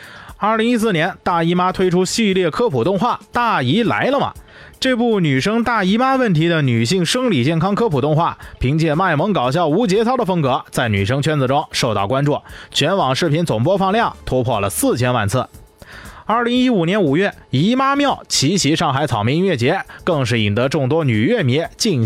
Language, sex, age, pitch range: Chinese, male, 20-39, 130-200 Hz